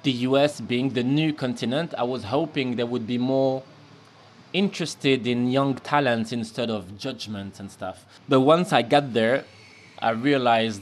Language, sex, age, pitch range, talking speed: English, male, 20-39, 120-145 Hz, 160 wpm